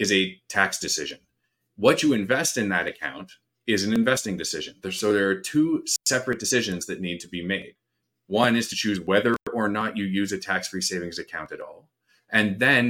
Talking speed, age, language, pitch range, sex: 195 wpm, 30-49, English, 95-125 Hz, male